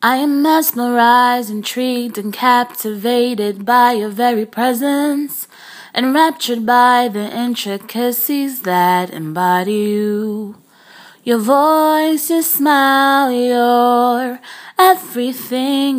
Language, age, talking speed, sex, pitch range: English, 20-39, 85 wpm, female, 240-310 Hz